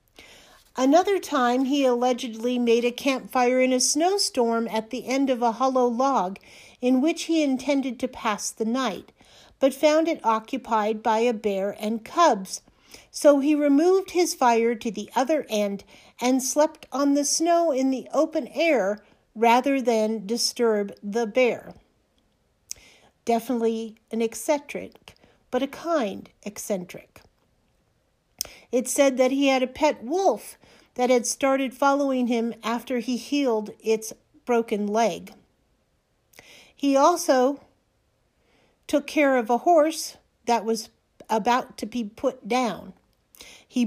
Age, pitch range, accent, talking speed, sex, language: 50-69, 230-280 Hz, American, 135 wpm, female, English